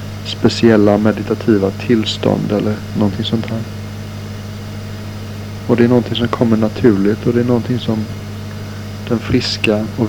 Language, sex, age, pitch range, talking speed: Swedish, male, 60-79, 105-110 Hz, 130 wpm